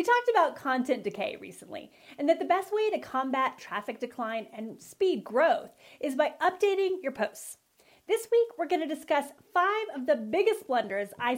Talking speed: 185 wpm